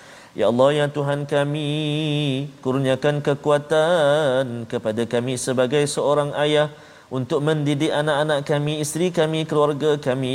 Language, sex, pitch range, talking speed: Malayalam, male, 130-150 Hz, 115 wpm